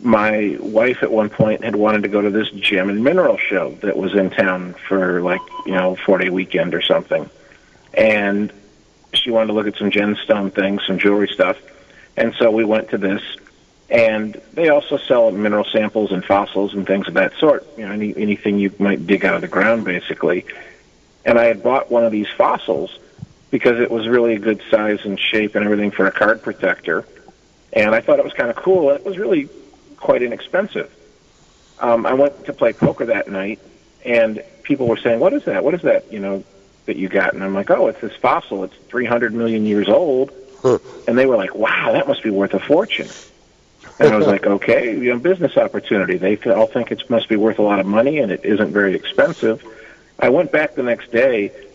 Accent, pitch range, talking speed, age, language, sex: American, 100-120 Hz, 215 wpm, 40-59, English, male